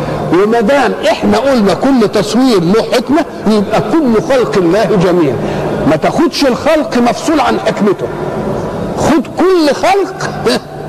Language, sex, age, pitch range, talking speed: Arabic, male, 50-69, 215-275 Hz, 115 wpm